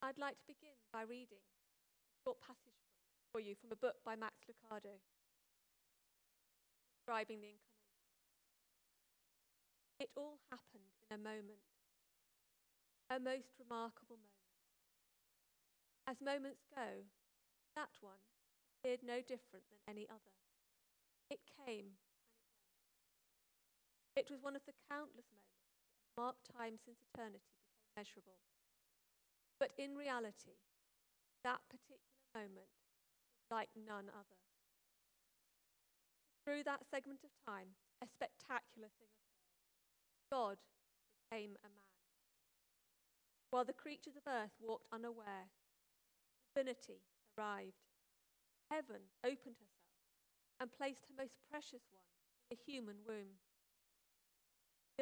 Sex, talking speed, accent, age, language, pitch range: female, 115 wpm, British, 40-59, English, 210-265 Hz